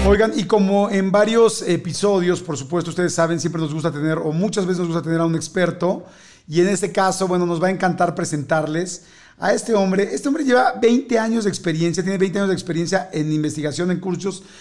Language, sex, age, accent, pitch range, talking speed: Spanish, male, 40-59, Mexican, 165-200 Hz, 205 wpm